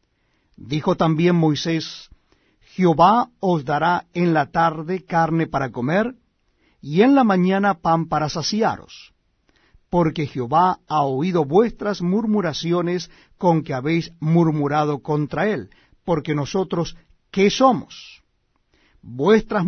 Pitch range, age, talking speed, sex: 150-185 Hz, 50-69, 110 wpm, male